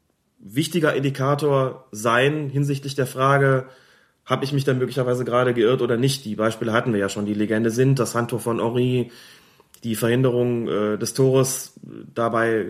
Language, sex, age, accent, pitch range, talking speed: German, male, 30-49, German, 115-135 Hz, 160 wpm